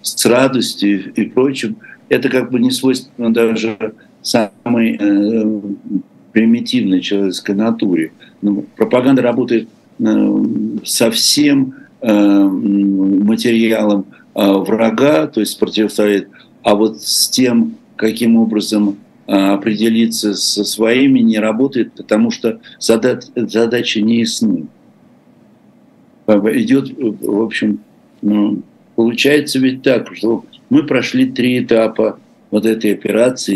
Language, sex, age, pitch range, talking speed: Russian, male, 60-79, 100-125 Hz, 105 wpm